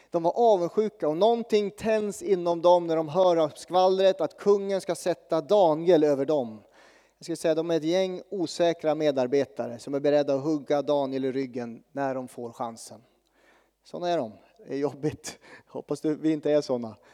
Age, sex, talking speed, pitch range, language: 30-49, male, 180 wpm, 135-175 Hz, Swedish